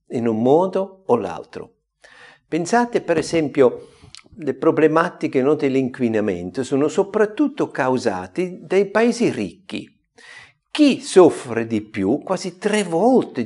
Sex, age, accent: male, 50-69, native